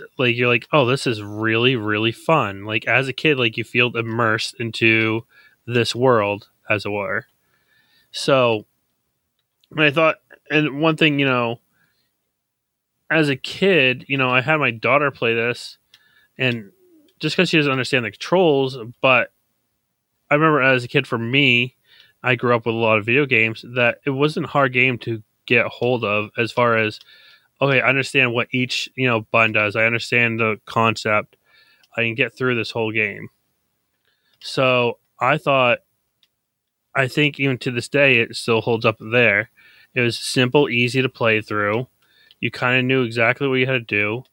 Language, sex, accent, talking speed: English, male, American, 175 wpm